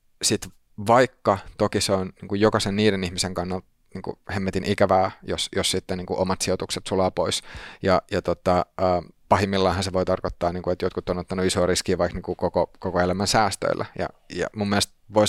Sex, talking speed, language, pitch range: male, 185 wpm, Finnish, 90-100 Hz